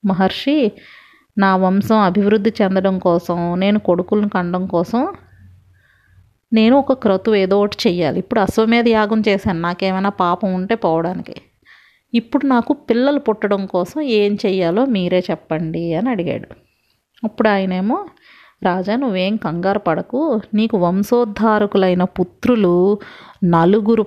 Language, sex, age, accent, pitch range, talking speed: Telugu, female, 30-49, native, 180-225 Hz, 110 wpm